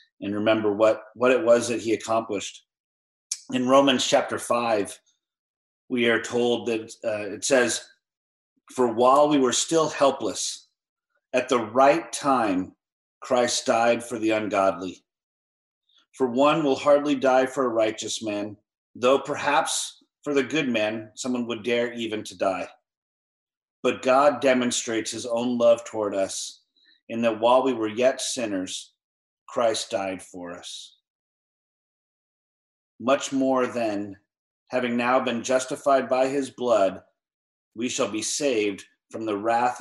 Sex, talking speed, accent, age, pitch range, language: male, 140 wpm, American, 40-59, 110-130 Hz, English